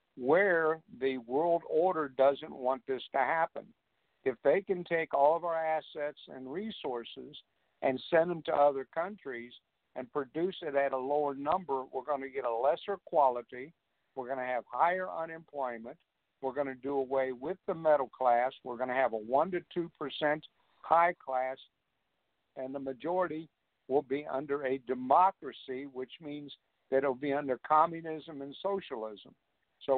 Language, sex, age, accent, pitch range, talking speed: English, male, 60-79, American, 135-165 Hz, 165 wpm